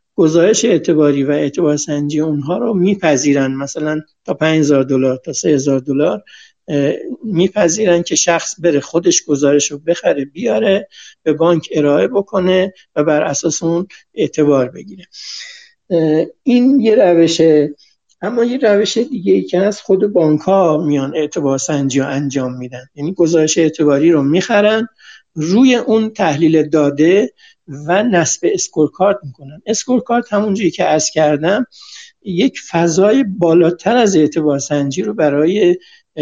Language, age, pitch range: Persian, 60-79, 150-200 Hz